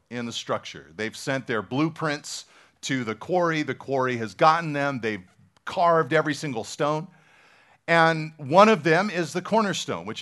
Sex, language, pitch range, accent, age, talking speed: male, English, 145-195 Hz, American, 40-59, 165 wpm